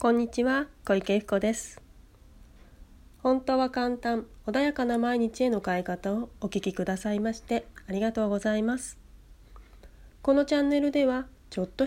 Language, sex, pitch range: Japanese, female, 200-260 Hz